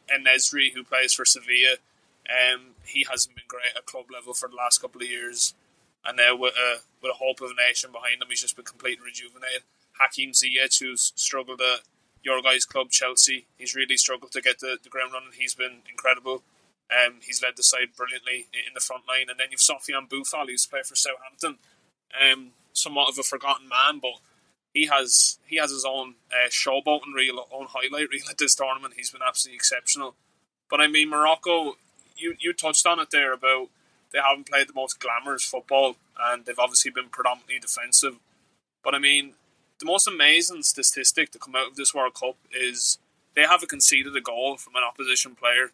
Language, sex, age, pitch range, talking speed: English, male, 20-39, 125-135 Hz, 195 wpm